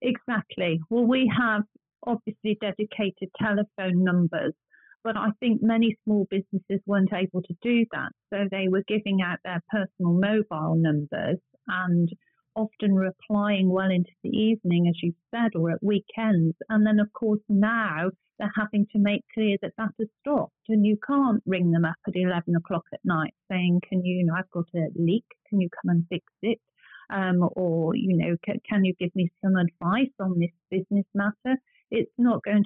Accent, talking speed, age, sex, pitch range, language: British, 180 wpm, 40-59, female, 185-220 Hz, English